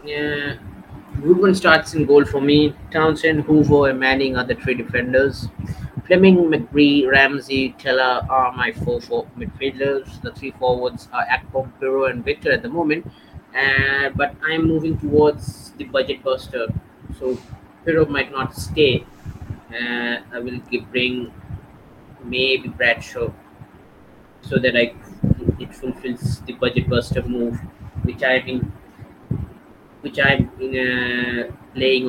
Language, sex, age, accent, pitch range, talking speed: English, male, 20-39, Indian, 125-145 Hz, 140 wpm